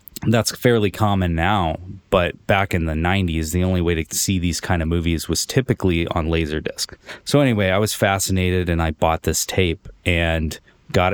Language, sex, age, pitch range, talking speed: English, male, 20-39, 80-95 Hz, 185 wpm